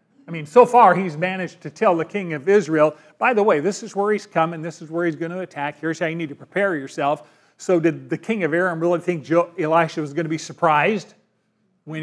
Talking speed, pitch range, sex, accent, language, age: 245 wpm, 160-210 Hz, male, American, English, 40-59